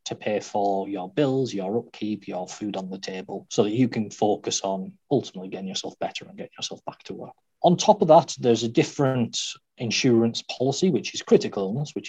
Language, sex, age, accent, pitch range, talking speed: English, male, 40-59, British, 100-140 Hz, 210 wpm